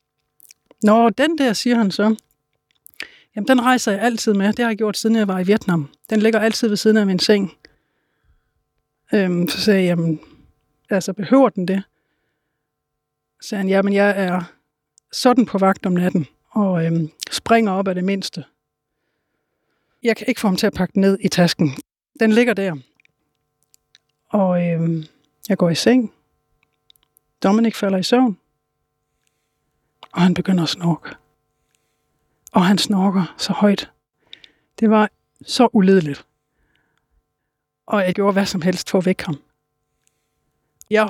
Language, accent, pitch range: Danish, native, 175-220 Hz